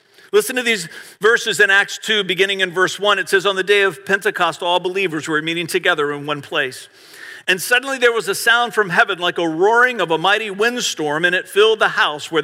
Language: English